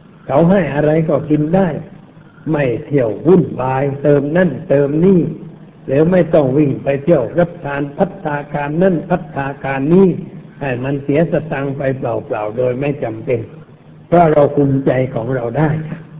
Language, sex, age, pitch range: Thai, male, 60-79, 140-170 Hz